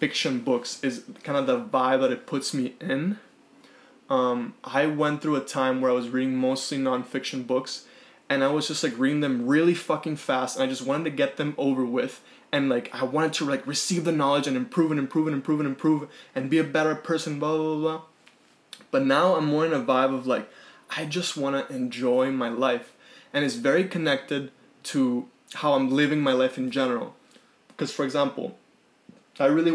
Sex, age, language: male, 20-39, English